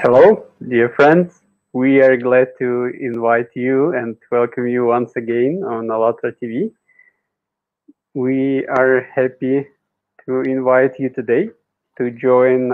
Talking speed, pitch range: 120 wpm, 125-155 Hz